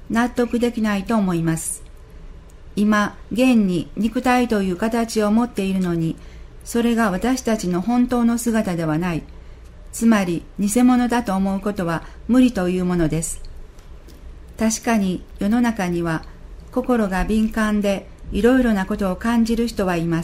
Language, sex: Japanese, female